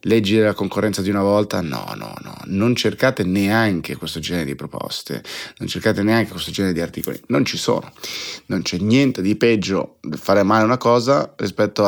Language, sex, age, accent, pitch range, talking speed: Italian, male, 30-49, native, 90-110 Hz, 180 wpm